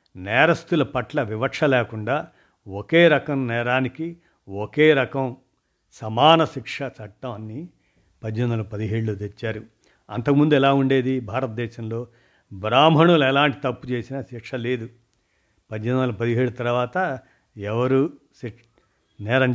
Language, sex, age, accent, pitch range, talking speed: Telugu, male, 50-69, native, 115-140 Hz, 90 wpm